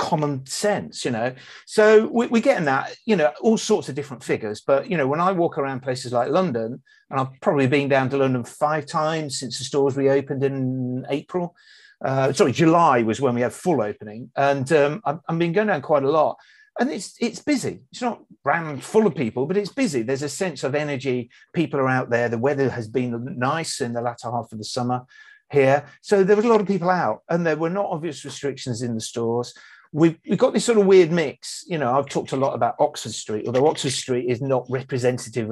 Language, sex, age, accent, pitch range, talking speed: English, male, 50-69, British, 125-180 Hz, 225 wpm